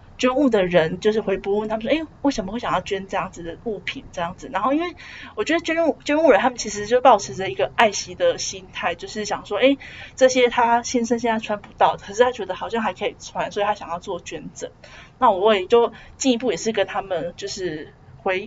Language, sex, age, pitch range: Chinese, female, 20-39, 185-240 Hz